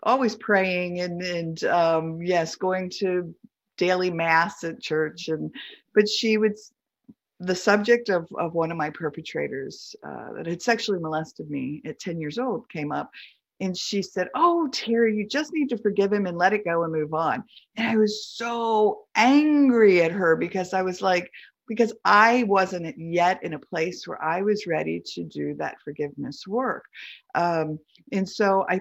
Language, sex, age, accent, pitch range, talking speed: English, female, 50-69, American, 160-215 Hz, 175 wpm